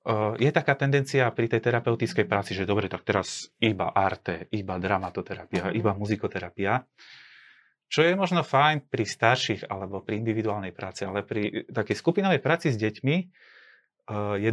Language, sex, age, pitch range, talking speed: Slovak, male, 30-49, 105-150 Hz, 140 wpm